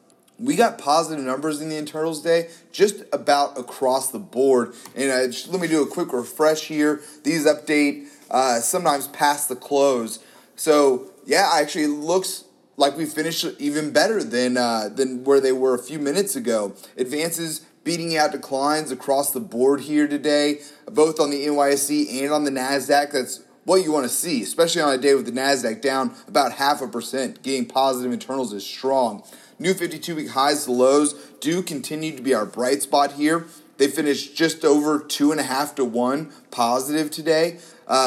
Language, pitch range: English, 135-160 Hz